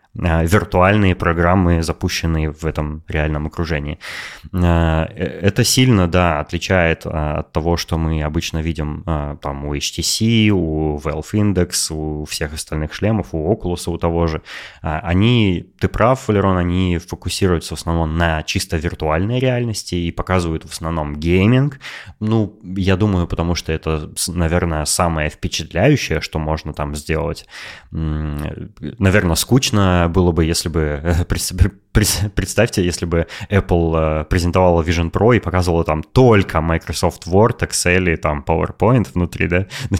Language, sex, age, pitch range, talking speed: Russian, male, 20-39, 80-100 Hz, 130 wpm